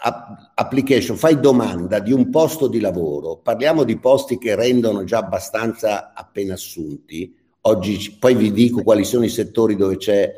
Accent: native